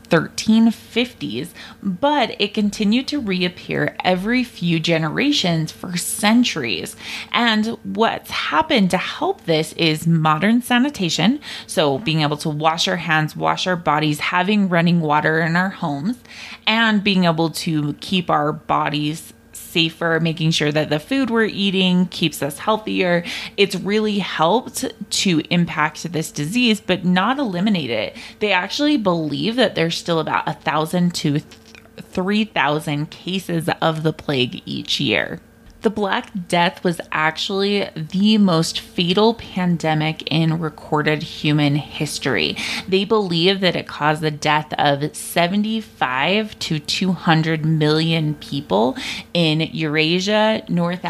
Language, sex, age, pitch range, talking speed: English, female, 20-39, 155-200 Hz, 130 wpm